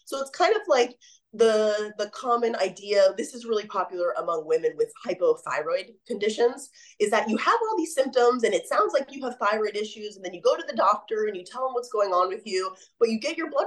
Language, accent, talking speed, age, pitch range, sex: English, American, 235 wpm, 20-39, 200-315 Hz, female